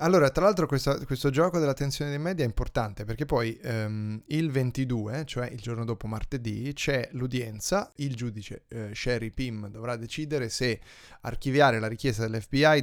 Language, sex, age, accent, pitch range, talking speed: Italian, male, 20-39, native, 115-140 Hz, 165 wpm